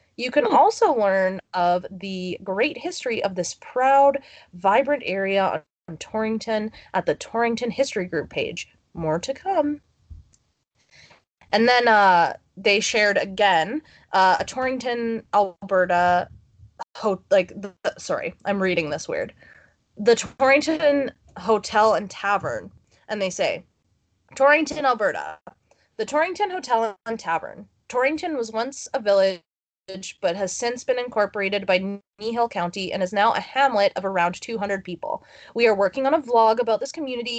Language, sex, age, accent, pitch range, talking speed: English, female, 20-39, American, 195-270 Hz, 140 wpm